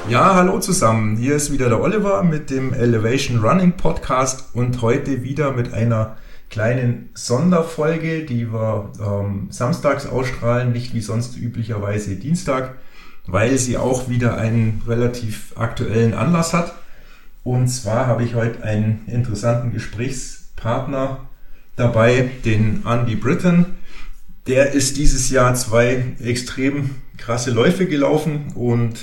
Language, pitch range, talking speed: German, 115-135 Hz, 125 wpm